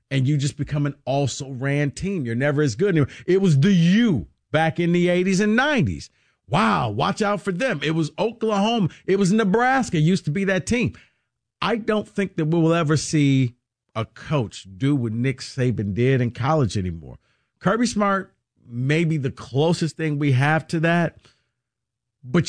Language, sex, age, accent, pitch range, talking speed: English, male, 50-69, American, 125-165 Hz, 180 wpm